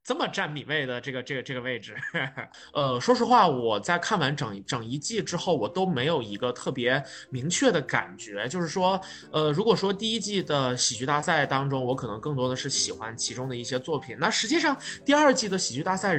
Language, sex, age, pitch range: Chinese, male, 20-39, 120-185 Hz